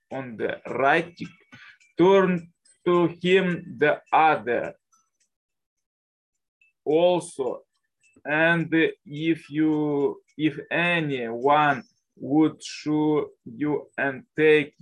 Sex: male